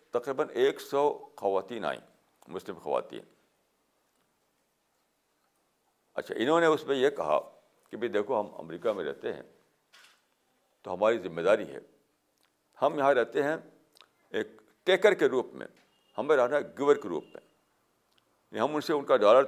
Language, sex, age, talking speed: Urdu, male, 60-79, 150 wpm